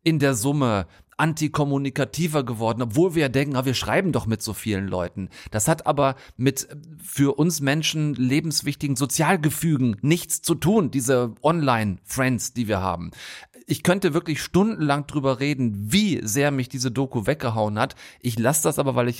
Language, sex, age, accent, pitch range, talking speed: German, male, 40-59, German, 115-150 Hz, 165 wpm